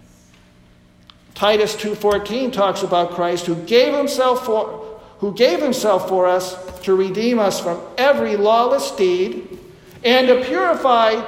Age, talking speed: 60-79, 130 wpm